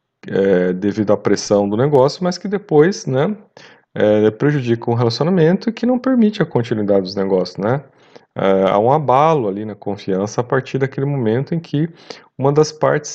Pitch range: 100-130 Hz